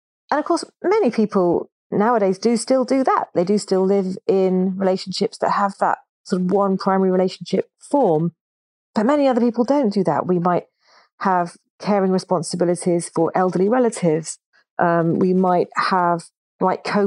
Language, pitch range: English, 175-215 Hz